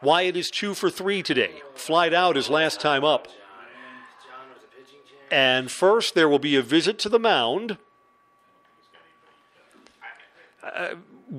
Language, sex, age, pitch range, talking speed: English, male, 50-69, 140-185 Hz, 120 wpm